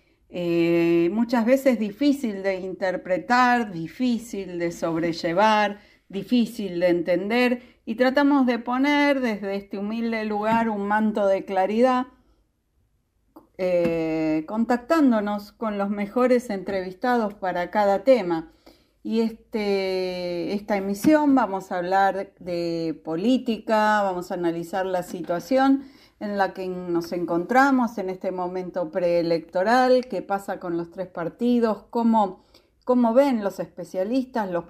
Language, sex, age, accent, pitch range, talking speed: Spanish, female, 40-59, Argentinian, 185-245 Hz, 115 wpm